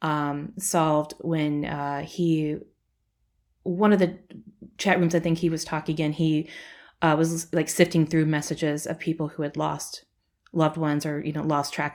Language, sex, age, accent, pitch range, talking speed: English, female, 20-39, American, 150-170 Hz, 175 wpm